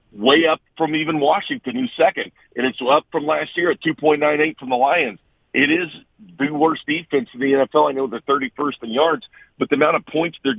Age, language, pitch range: 50-69, English, 120-150 Hz